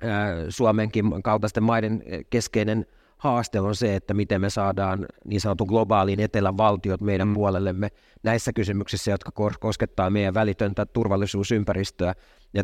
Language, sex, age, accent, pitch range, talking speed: Finnish, male, 30-49, native, 95-110 Hz, 125 wpm